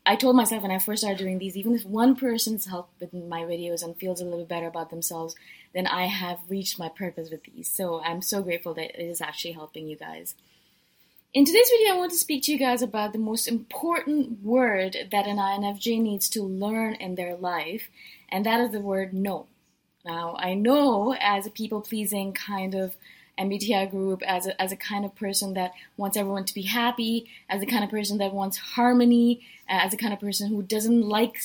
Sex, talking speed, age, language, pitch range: female, 215 wpm, 20-39, English, 185-240 Hz